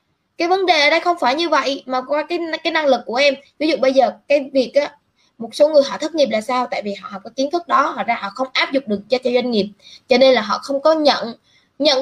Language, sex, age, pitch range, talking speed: Vietnamese, female, 20-39, 250-310 Hz, 295 wpm